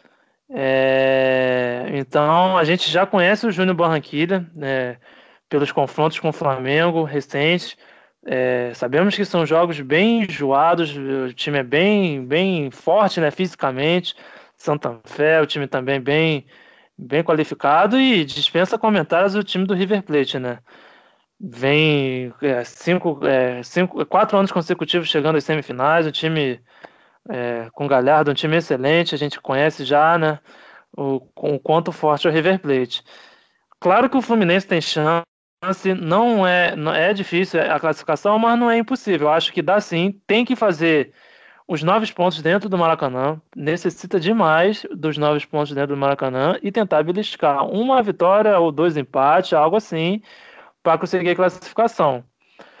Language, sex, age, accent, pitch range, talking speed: Portuguese, male, 20-39, Brazilian, 140-185 Hz, 150 wpm